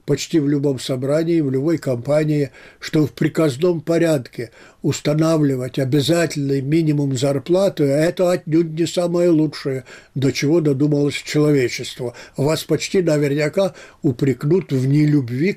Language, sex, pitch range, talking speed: Russian, male, 145-180 Hz, 120 wpm